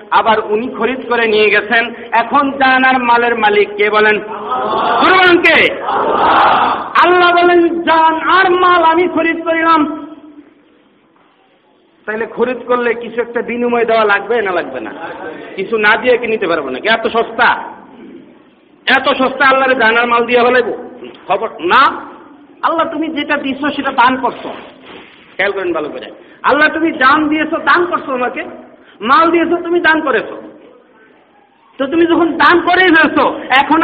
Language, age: Bengali, 50-69